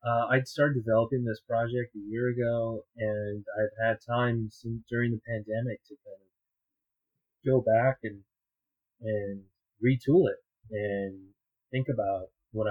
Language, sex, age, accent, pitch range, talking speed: English, male, 30-49, American, 100-120 Hz, 145 wpm